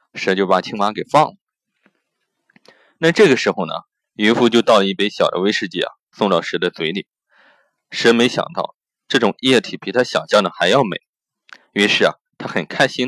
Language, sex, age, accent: Chinese, male, 20-39, native